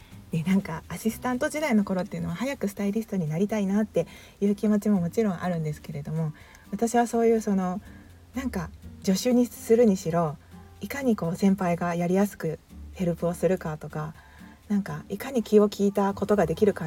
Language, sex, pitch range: Japanese, female, 160-215 Hz